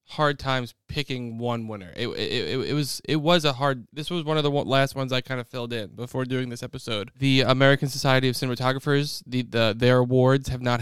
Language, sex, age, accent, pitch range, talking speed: English, male, 20-39, American, 115-135 Hz, 225 wpm